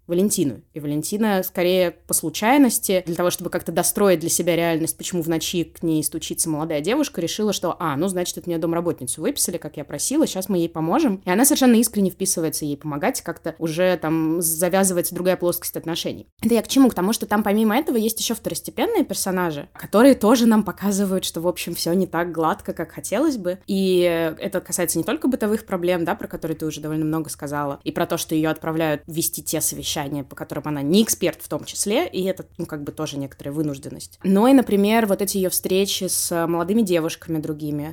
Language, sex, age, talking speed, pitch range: Russian, female, 20-39, 205 wpm, 165-200 Hz